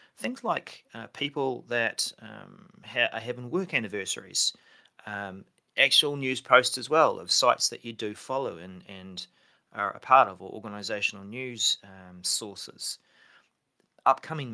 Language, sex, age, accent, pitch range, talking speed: English, male, 30-49, Australian, 100-125 Hz, 140 wpm